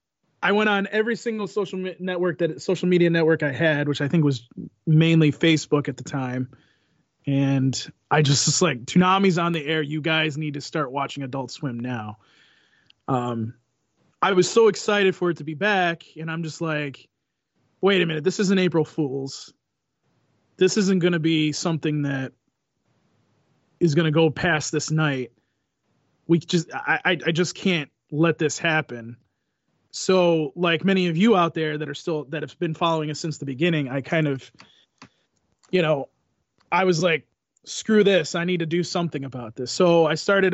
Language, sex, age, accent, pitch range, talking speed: English, male, 20-39, American, 145-175 Hz, 180 wpm